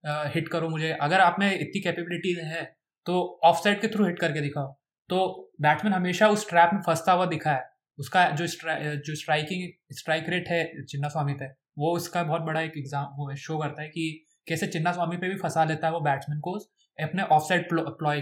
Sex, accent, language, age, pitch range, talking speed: male, native, Hindi, 20-39, 150-190 Hz, 200 wpm